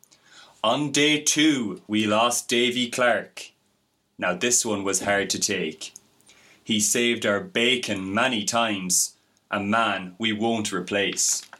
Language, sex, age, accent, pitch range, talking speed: English, male, 20-39, Irish, 110-135 Hz, 130 wpm